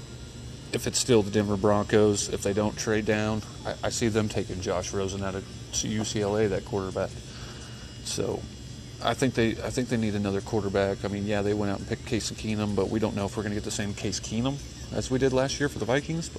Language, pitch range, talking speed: English, 95-110 Hz, 225 wpm